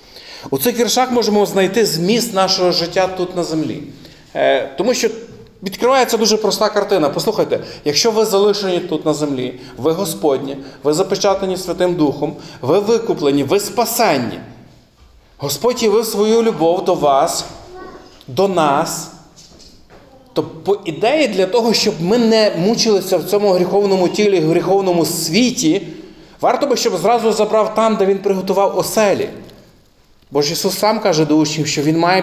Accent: native